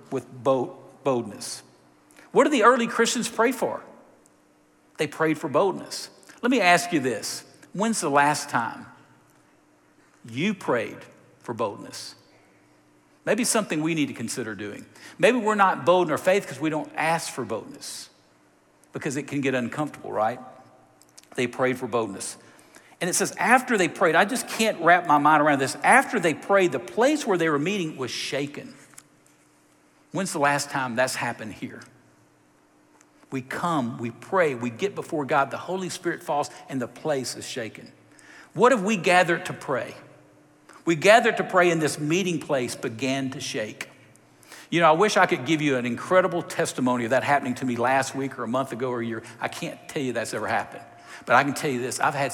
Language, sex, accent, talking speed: English, male, American, 185 wpm